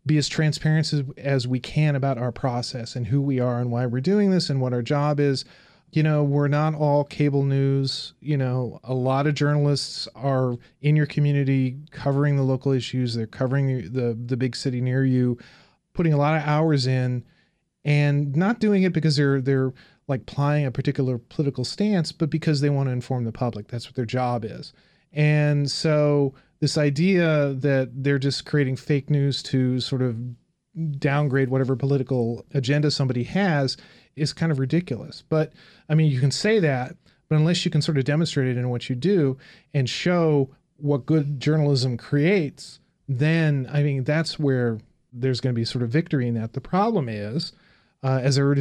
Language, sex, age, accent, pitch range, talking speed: English, male, 30-49, American, 130-150 Hz, 190 wpm